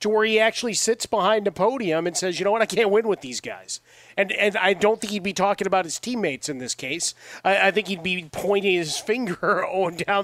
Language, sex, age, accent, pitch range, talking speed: English, male, 30-49, American, 135-185 Hz, 250 wpm